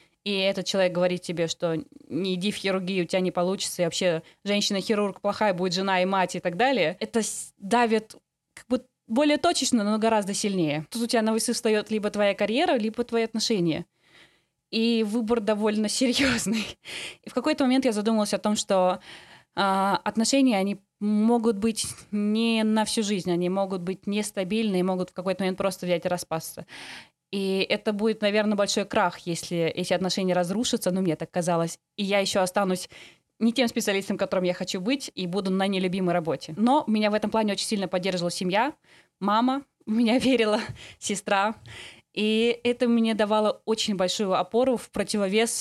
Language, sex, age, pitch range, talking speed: Russian, female, 20-39, 190-230 Hz, 170 wpm